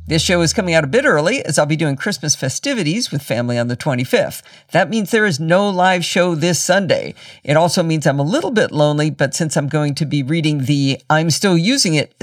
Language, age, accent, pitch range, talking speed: English, 50-69, American, 145-205 Hz, 220 wpm